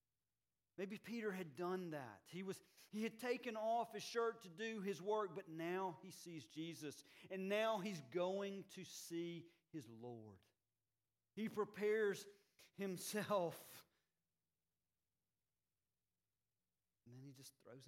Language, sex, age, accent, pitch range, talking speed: English, male, 40-59, American, 190-245 Hz, 130 wpm